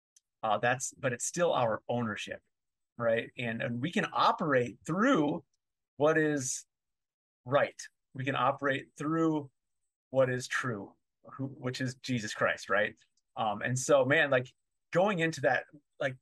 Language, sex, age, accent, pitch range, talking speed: English, male, 30-49, American, 120-145 Hz, 145 wpm